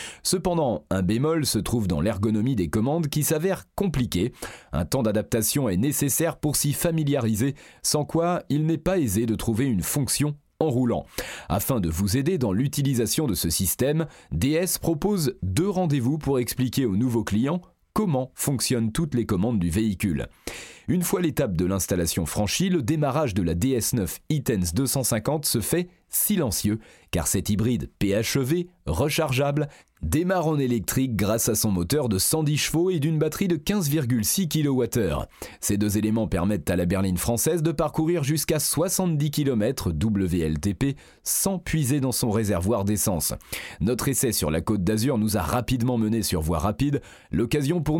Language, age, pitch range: French, 30-49, 110-155 Hz